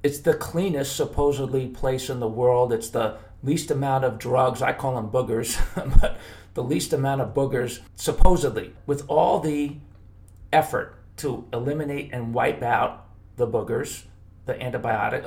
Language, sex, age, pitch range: English, male, 40-59, 115-135 Hz